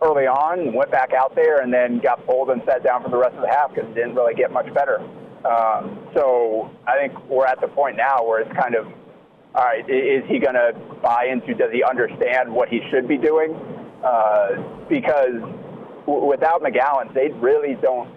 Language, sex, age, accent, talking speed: English, male, 30-49, American, 205 wpm